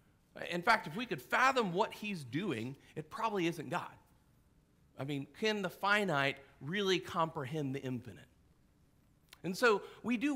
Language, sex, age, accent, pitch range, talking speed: English, male, 40-59, American, 155-210 Hz, 150 wpm